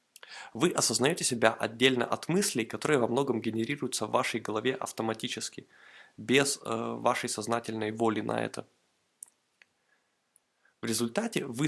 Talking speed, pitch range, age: 125 wpm, 115-130 Hz, 20-39